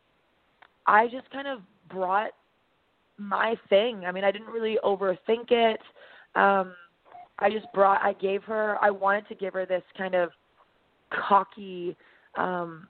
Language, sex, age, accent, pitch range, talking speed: English, female, 20-39, American, 185-220 Hz, 145 wpm